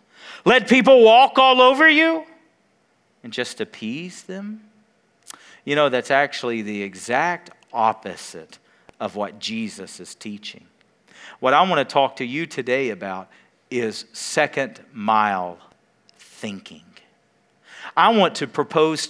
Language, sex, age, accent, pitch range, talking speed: English, male, 40-59, American, 175-265 Hz, 125 wpm